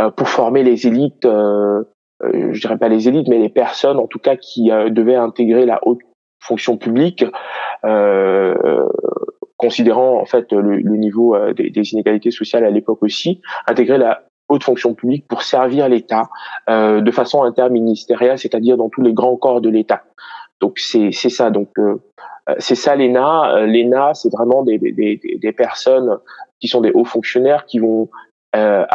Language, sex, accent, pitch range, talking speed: French, male, French, 110-140 Hz, 170 wpm